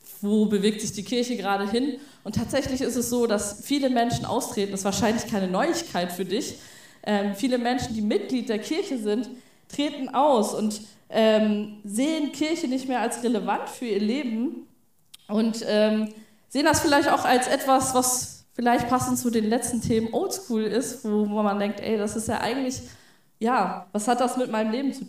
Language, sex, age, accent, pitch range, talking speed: German, female, 20-39, German, 215-250 Hz, 175 wpm